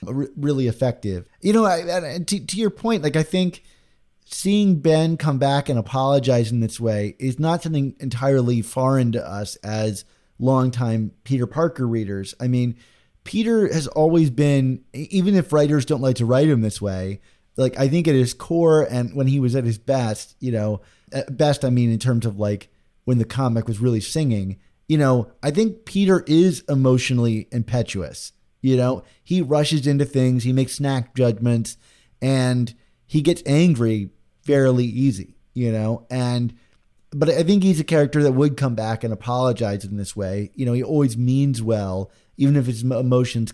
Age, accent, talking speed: 30-49, American, 180 wpm